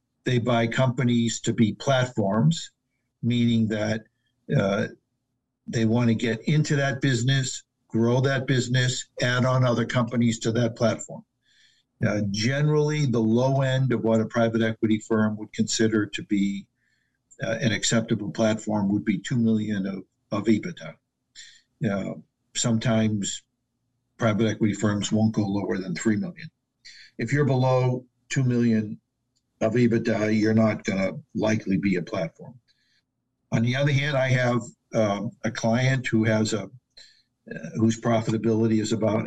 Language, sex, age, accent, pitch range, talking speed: English, male, 50-69, American, 110-125 Hz, 145 wpm